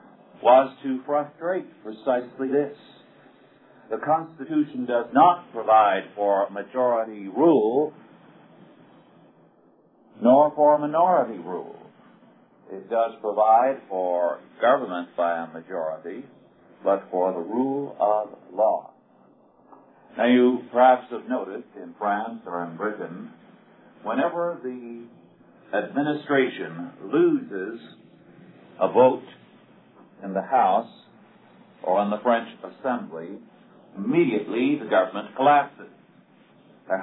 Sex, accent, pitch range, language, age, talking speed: male, American, 105-145 Hz, English, 50-69, 95 wpm